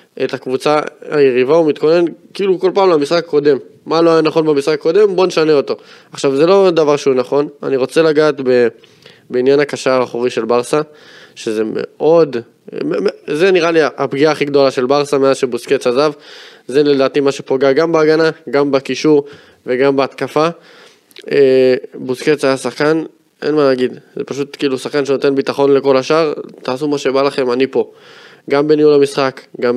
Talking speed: 165 wpm